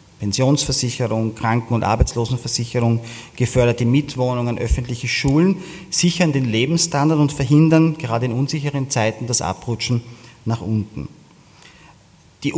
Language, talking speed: German, 105 wpm